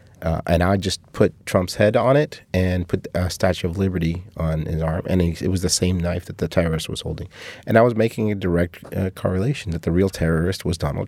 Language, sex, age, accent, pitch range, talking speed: English, male, 30-49, American, 85-100 Hz, 235 wpm